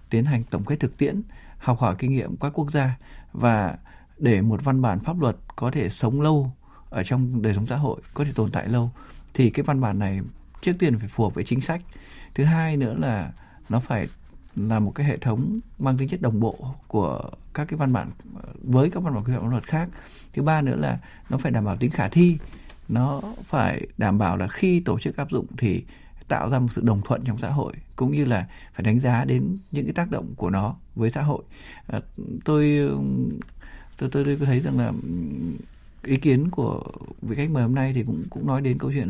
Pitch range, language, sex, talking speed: 110-145 Hz, Vietnamese, male, 225 wpm